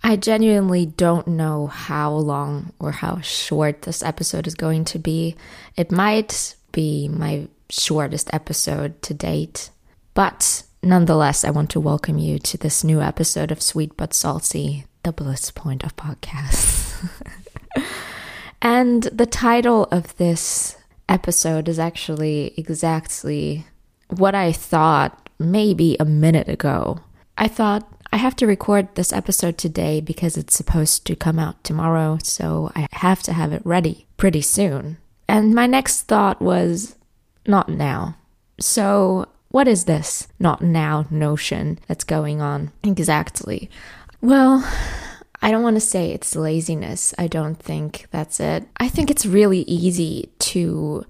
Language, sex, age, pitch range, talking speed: English, female, 20-39, 155-190 Hz, 140 wpm